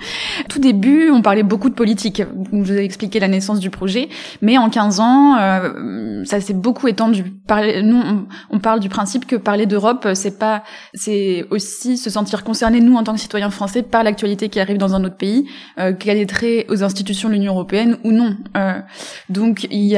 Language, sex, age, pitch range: French, female, 20-39, 195-225 Hz